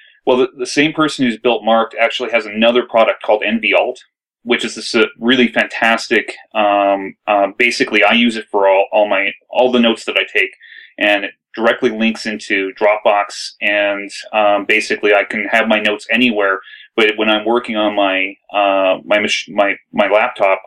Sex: male